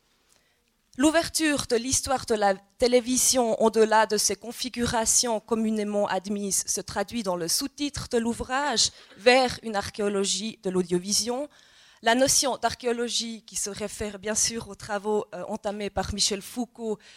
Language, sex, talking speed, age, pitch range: French, female, 135 wpm, 20-39, 205-255 Hz